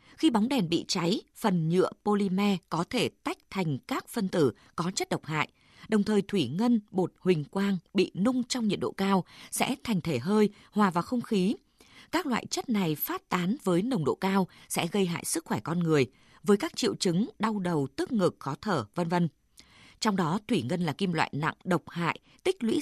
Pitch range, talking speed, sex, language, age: 170-225 Hz, 215 wpm, female, Vietnamese, 20-39